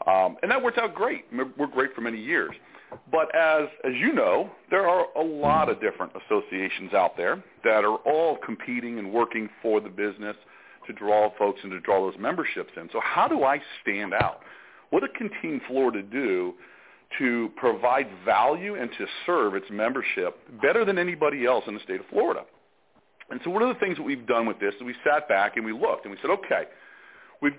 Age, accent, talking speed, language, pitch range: 40-59, American, 205 wpm, English, 115-150 Hz